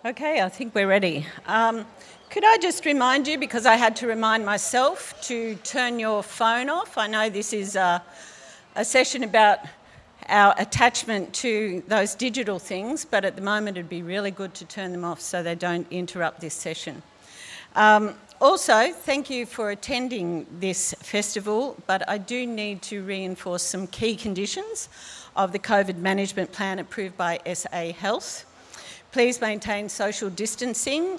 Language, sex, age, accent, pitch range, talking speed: English, female, 50-69, Australian, 180-225 Hz, 160 wpm